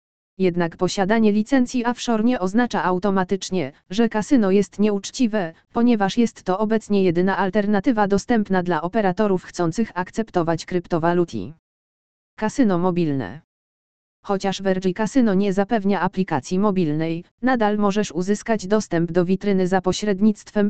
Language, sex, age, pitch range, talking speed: Polish, female, 20-39, 185-220 Hz, 115 wpm